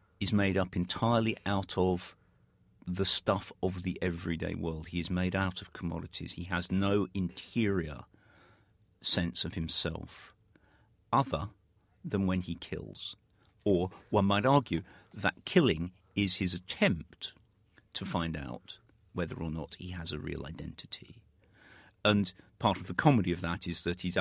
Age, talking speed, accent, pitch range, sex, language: 50-69, 150 wpm, British, 85-100 Hz, male, English